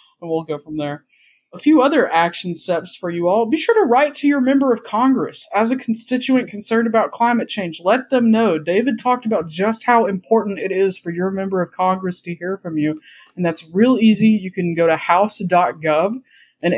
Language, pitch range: English, 175-225 Hz